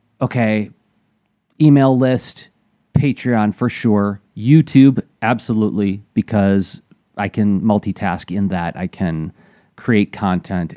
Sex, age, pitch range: male, 30-49, 100-135 Hz